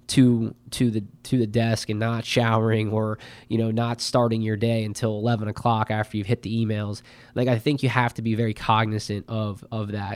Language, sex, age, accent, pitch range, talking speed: English, male, 20-39, American, 105-120 Hz, 215 wpm